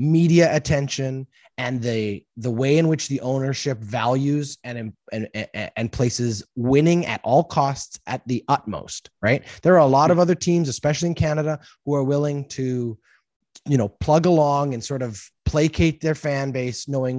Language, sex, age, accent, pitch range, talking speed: English, male, 20-39, American, 110-150 Hz, 170 wpm